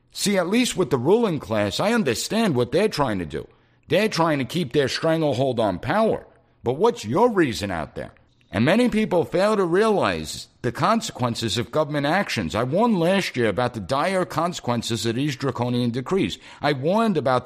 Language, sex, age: English, male, 60-79